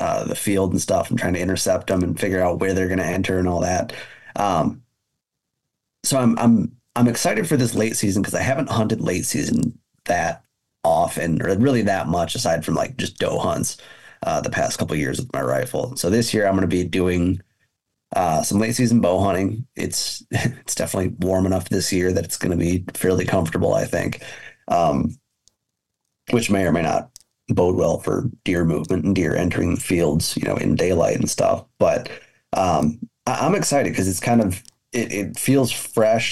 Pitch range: 90-110 Hz